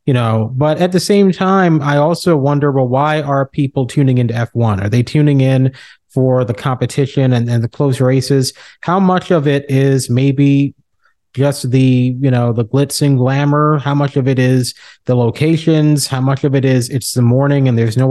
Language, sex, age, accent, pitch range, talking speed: English, male, 30-49, American, 125-150 Hz, 200 wpm